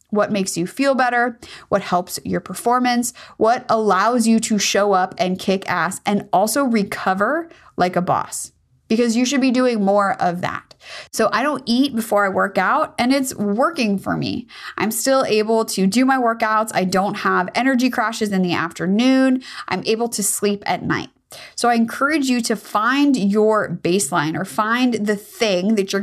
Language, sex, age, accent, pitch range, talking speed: English, female, 20-39, American, 185-235 Hz, 185 wpm